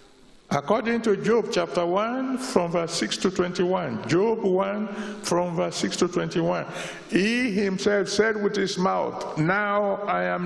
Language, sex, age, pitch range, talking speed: English, male, 60-79, 175-220 Hz, 150 wpm